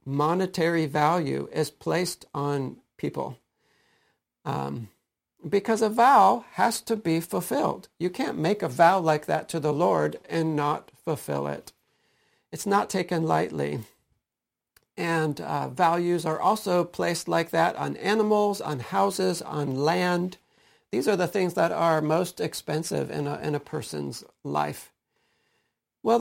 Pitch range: 145-185 Hz